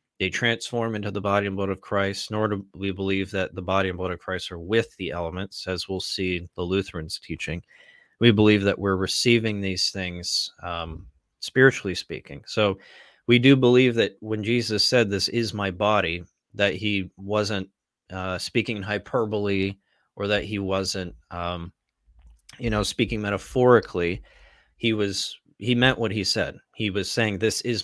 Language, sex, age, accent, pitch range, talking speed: English, male, 30-49, American, 95-110 Hz, 170 wpm